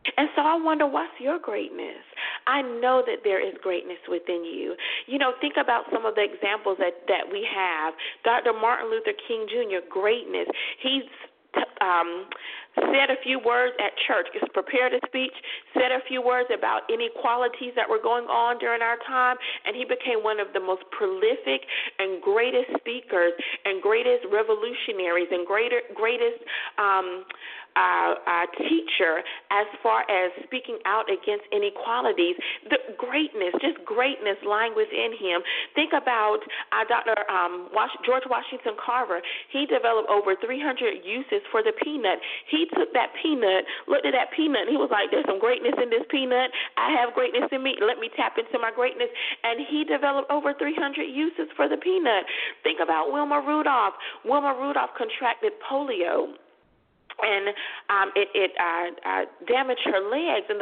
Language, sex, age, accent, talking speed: English, female, 40-59, American, 165 wpm